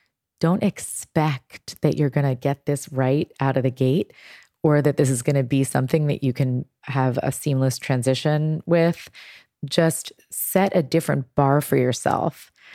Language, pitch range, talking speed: English, 135-160 Hz, 170 wpm